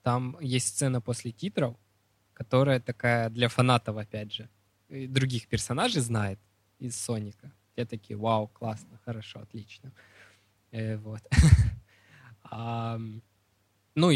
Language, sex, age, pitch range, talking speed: Russian, male, 20-39, 105-130 Hz, 100 wpm